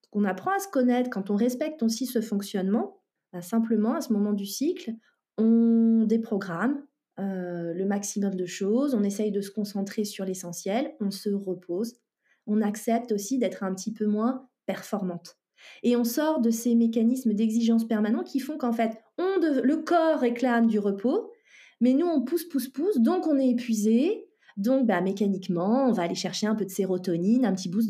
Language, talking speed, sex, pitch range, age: French, 185 wpm, female, 195-245 Hz, 30-49